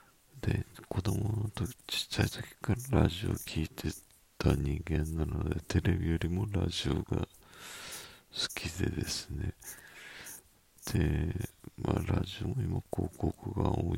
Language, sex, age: Japanese, male, 50-69